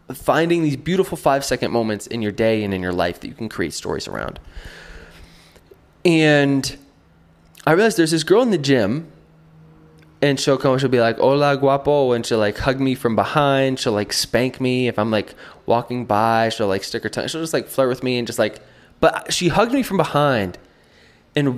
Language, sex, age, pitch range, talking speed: English, male, 20-39, 115-160 Hz, 205 wpm